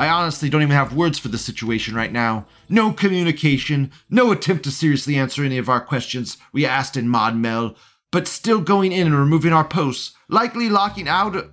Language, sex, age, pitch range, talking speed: English, male, 30-49, 145-200 Hz, 195 wpm